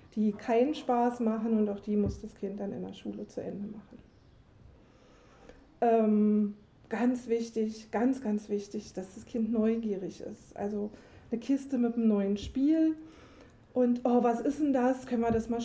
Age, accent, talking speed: 40-59, German, 175 wpm